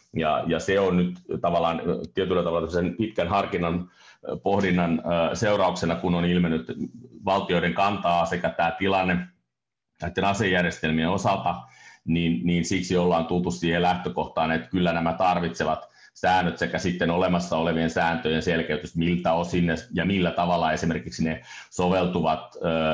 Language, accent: Finnish, native